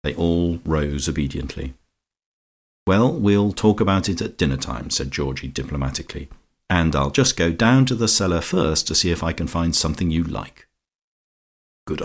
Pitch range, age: 80-95 Hz, 50-69